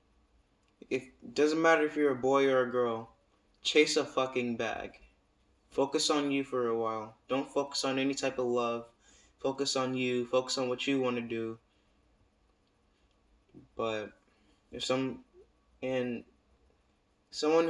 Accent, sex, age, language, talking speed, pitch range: American, male, 20-39, English, 140 wpm, 115-140 Hz